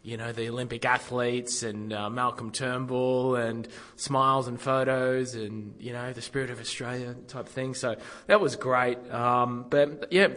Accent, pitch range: Australian, 105-125 Hz